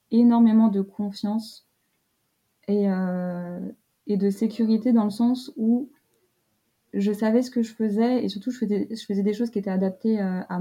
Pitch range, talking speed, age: 195-225 Hz, 170 wpm, 20-39